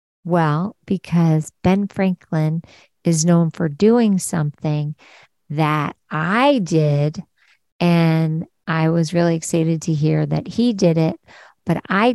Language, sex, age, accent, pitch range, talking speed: English, female, 50-69, American, 150-185 Hz, 125 wpm